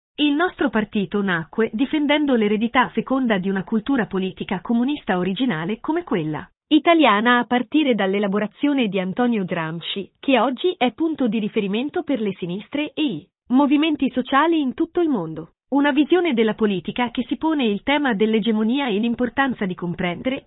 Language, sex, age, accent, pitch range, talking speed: Italian, female, 30-49, native, 210-290 Hz, 155 wpm